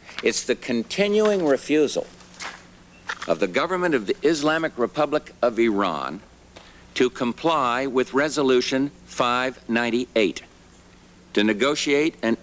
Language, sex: English, male